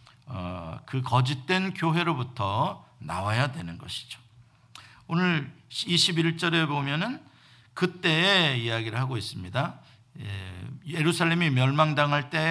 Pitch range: 120-175 Hz